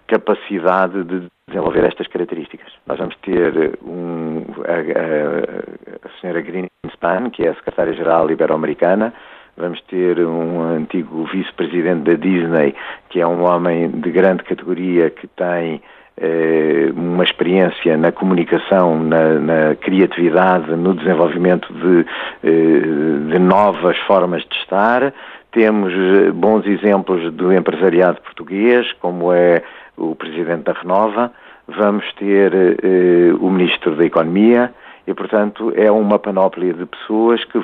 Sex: male